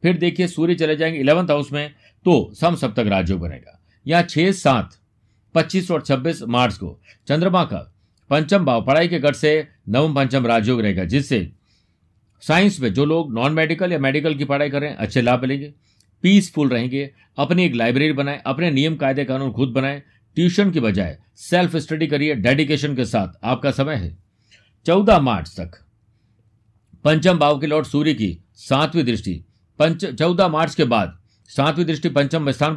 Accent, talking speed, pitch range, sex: native, 165 wpm, 110-160 Hz, male